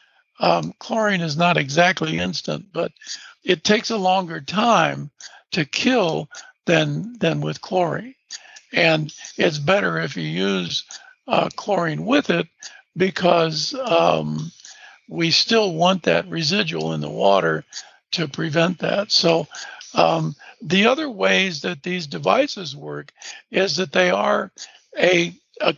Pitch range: 155-200 Hz